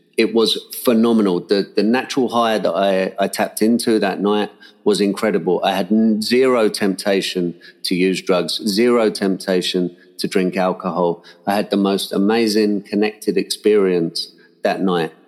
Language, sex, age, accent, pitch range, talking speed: English, male, 40-59, British, 95-105 Hz, 145 wpm